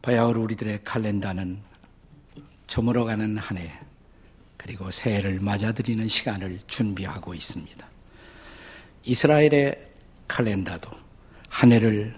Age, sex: 50-69, male